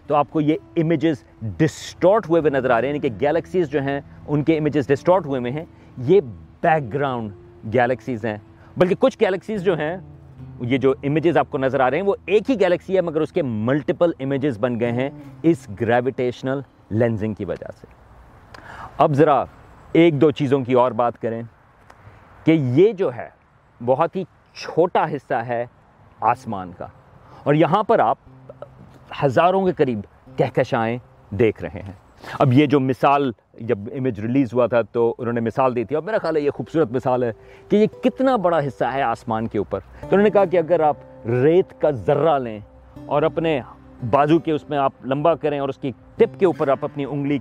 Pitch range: 120-160 Hz